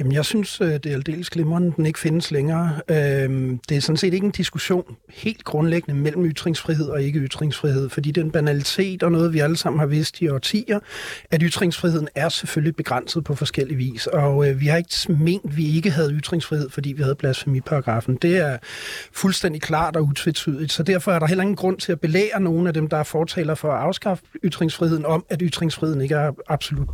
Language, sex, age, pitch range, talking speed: Danish, male, 40-59, 150-190 Hz, 200 wpm